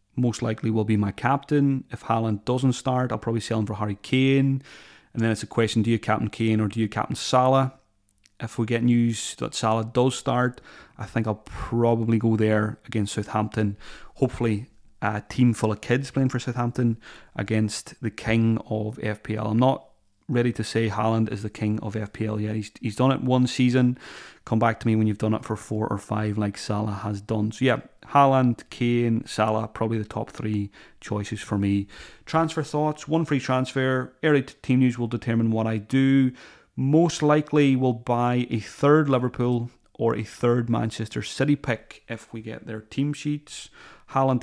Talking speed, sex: 190 wpm, male